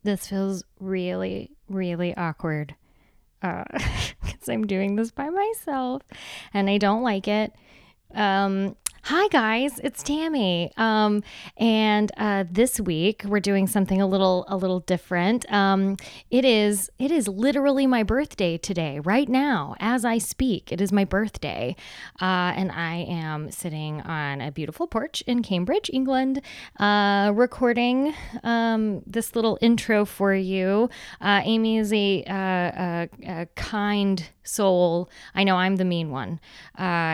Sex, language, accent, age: female, English, American, 10-29